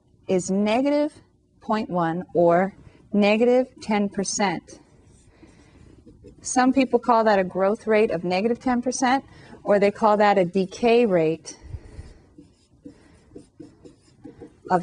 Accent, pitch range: American, 165-210 Hz